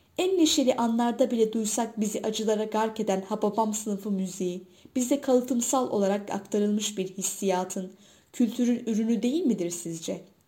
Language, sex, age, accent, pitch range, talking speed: Turkish, female, 10-29, native, 190-235 Hz, 130 wpm